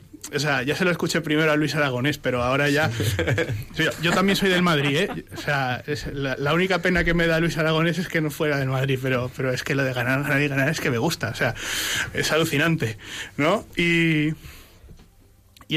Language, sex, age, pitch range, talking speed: Spanish, male, 30-49, 130-160 Hz, 225 wpm